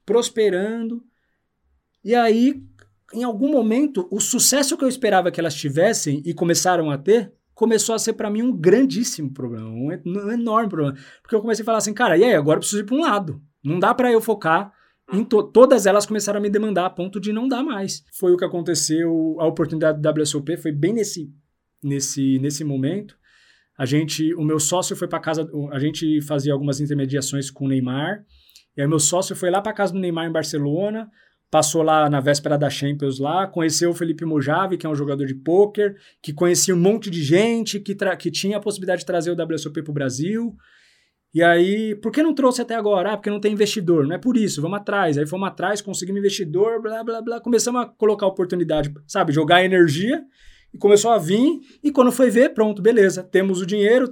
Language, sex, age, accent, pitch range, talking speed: Portuguese, male, 20-39, Brazilian, 155-215 Hz, 210 wpm